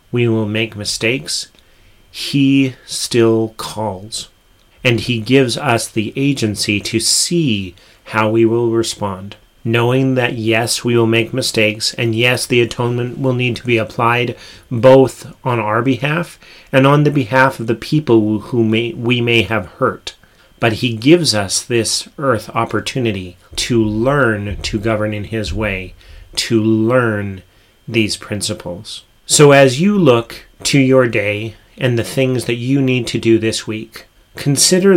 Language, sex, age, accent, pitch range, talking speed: English, male, 40-59, American, 105-125 Hz, 150 wpm